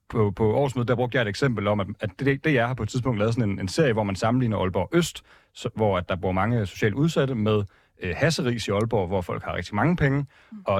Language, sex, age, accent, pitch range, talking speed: Danish, male, 30-49, native, 100-135 Hz, 240 wpm